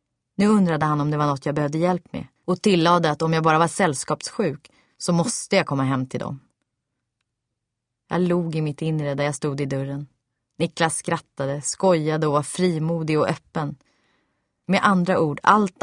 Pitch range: 140-180 Hz